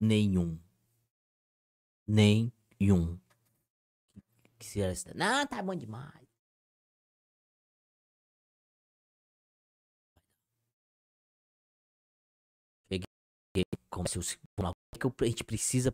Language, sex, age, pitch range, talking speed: Portuguese, male, 20-39, 95-125 Hz, 45 wpm